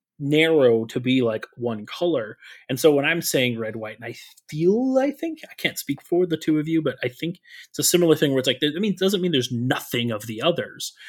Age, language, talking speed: 30-49, English, 250 wpm